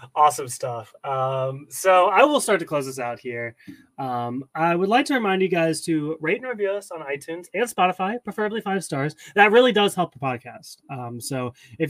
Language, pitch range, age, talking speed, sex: English, 140-195 Hz, 30-49, 205 wpm, male